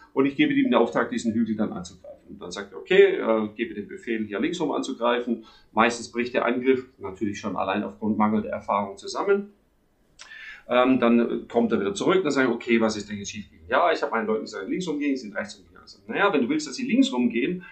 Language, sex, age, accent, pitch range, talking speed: German, male, 40-59, German, 110-180 Hz, 225 wpm